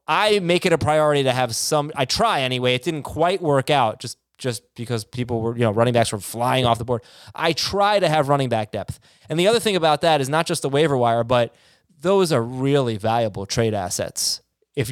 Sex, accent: male, American